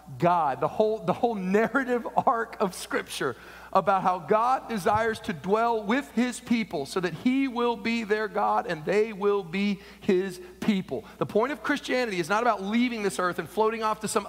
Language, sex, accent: English, male, American